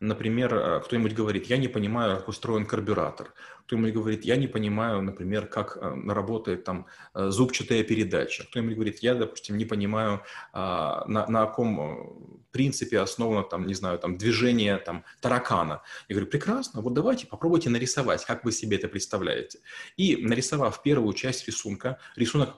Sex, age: male, 30-49